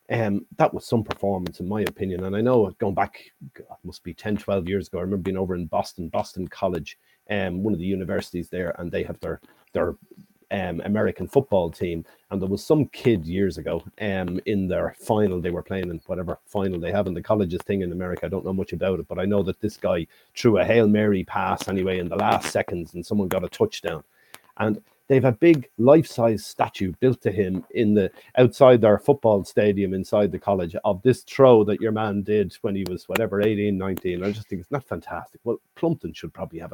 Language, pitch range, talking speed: English, 95-115 Hz, 225 wpm